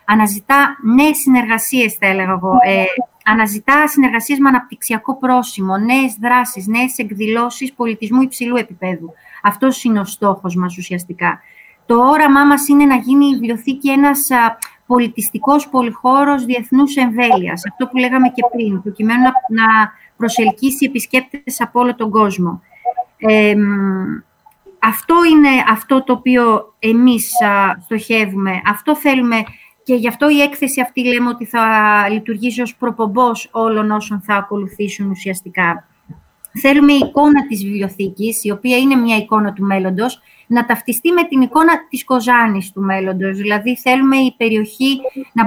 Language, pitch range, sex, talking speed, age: Greek, 210-260 Hz, female, 140 wpm, 30-49